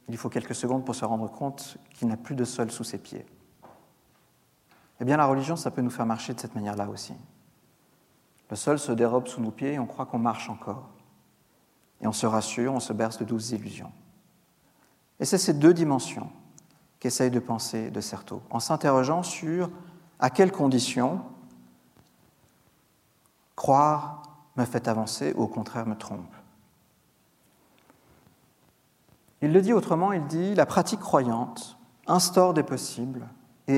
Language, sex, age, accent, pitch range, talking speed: French, male, 50-69, French, 120-150 Hz, 160 wpm